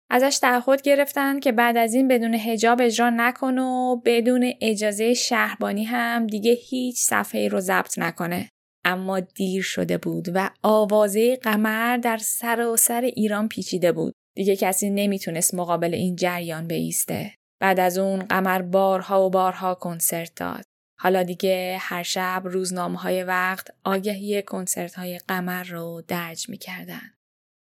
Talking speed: 140 wpm